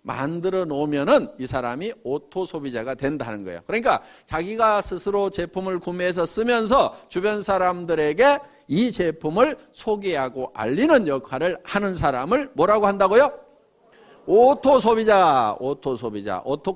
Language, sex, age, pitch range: Korean, male, 50-69, 140-225 Hz